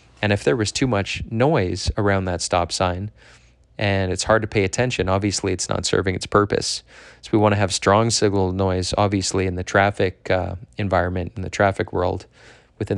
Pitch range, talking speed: 90-105 Hz, 195 wpm